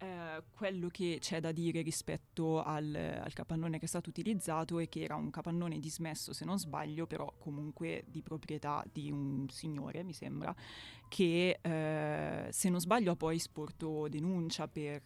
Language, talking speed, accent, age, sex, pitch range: Italian, 165 wpm, native, 20-39, female, 155-180 Hz